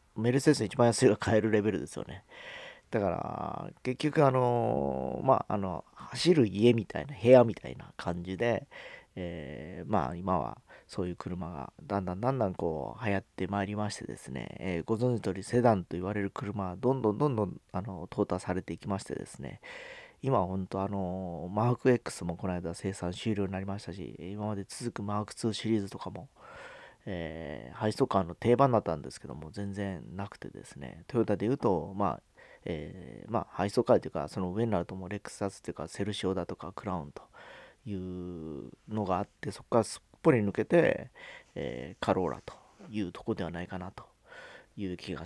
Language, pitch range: Japanese, 90-115 Hz